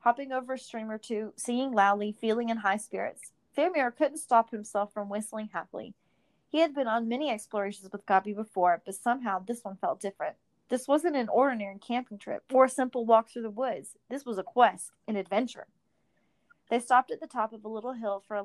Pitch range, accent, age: 205-245 Hz, American, 30-49